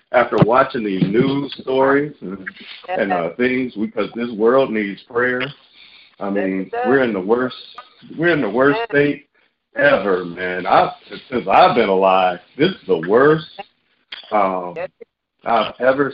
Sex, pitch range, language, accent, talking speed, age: male, 100-130 Hz, English, American, 140 wpm, 50-69